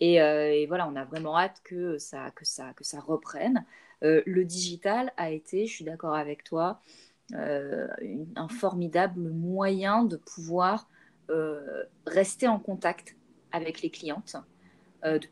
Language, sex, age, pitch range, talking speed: French, female, 20-39, 155-205 Hz, 160 wpm